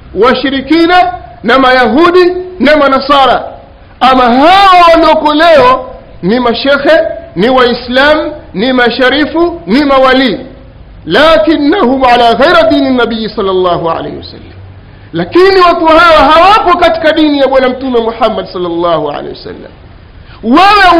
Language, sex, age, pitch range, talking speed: Swahili, male, 50-69, 215-310 Hz, 110 wpm